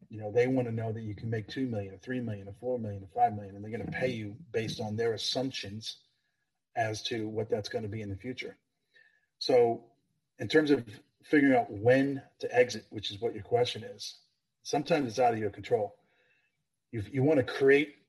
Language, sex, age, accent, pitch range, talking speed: English, male, 40-59, American, 110-140 Hz, 220 wpm